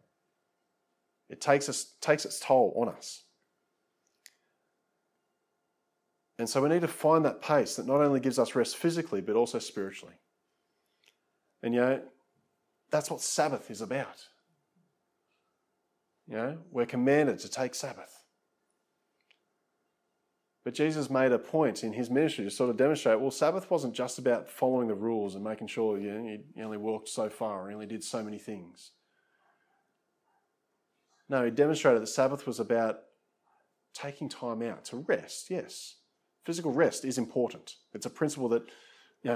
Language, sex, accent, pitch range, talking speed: English, male, Australian, 110-140 Hz, 150 wpm